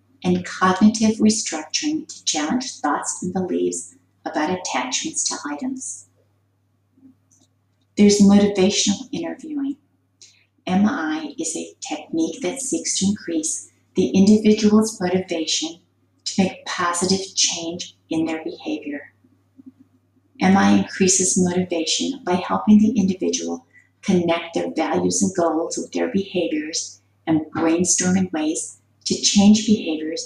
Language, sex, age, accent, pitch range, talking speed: English, female, 40-59, American, 150-220 Hz, 105 wpm